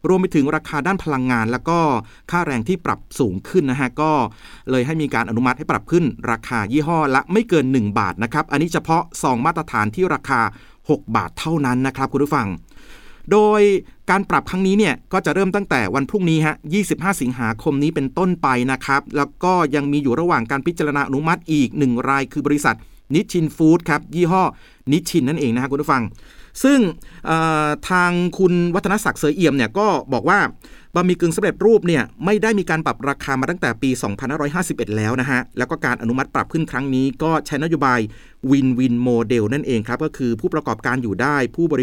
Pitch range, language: 130-170 Hz, Thai